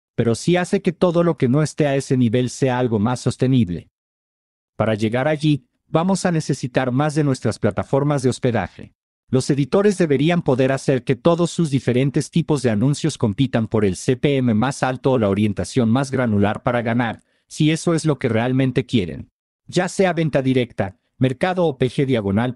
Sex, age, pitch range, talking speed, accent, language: male, 50-69, 115-150 Hz, 180 wpm, Mexican, Spanish